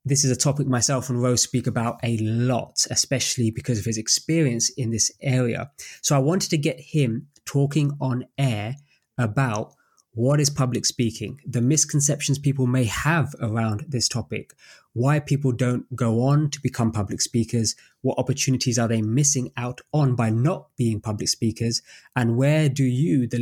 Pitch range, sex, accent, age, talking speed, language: 115-140 Hz, male, British, 20-39, 170 wpm, English